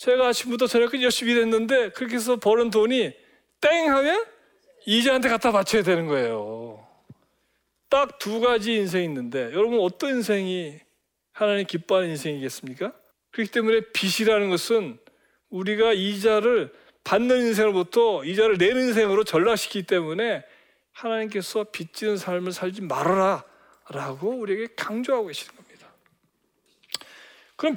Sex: male